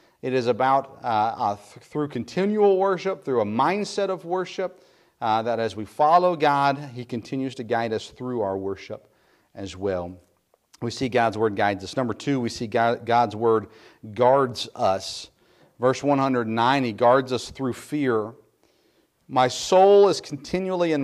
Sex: male